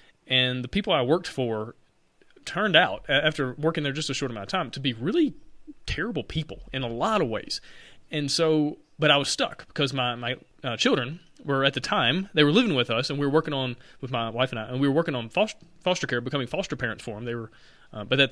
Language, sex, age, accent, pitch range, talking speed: English, male, 30-49, American, 120-150 Hz, 235 wpm